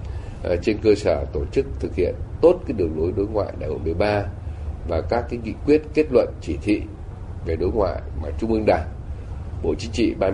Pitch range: 85-110 Hz